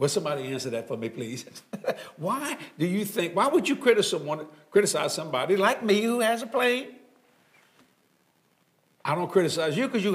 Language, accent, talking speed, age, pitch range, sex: English, American, 165 wpm, 60-79, 170-250 Hz, male